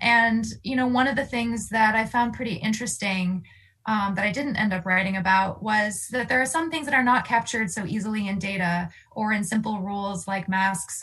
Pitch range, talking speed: 195-240 Hz, 220 wpm